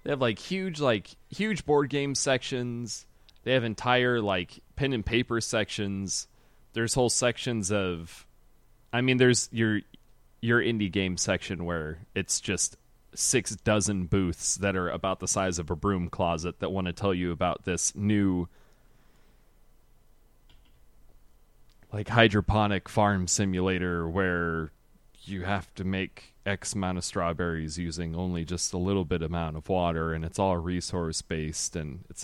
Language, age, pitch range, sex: English, 30-49, 85-110 Hz, male